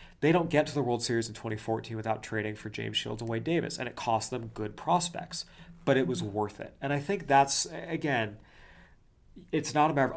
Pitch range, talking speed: 110-135 Hz, 220 wpm